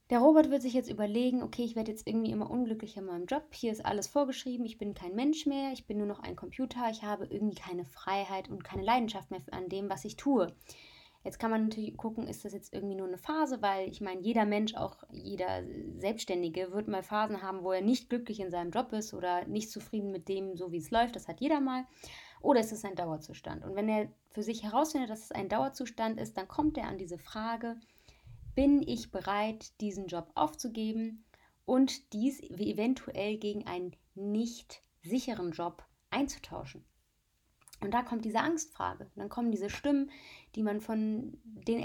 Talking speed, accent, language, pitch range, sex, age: 200 wpm, German, German, 195-245 Hz, female, 20-39